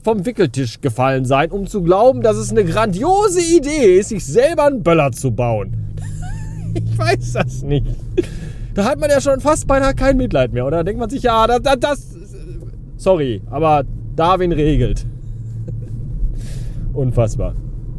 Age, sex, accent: 30-49, male, German